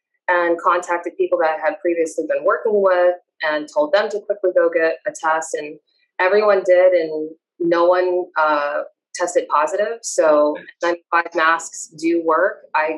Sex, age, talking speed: female, 20-39, 155 wpm